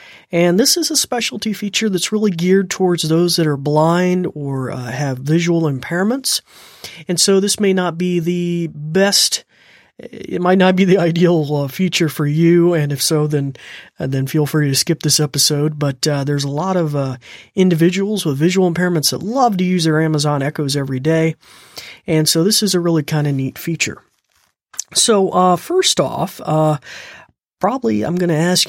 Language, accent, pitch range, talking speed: English, American, 150-190 Hz, 185 wpm